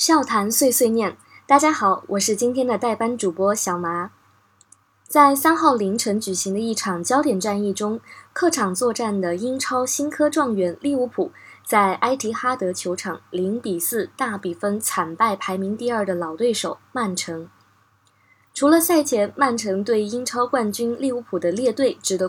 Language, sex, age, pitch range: Chinese, female, 20-39, 185-255 Hz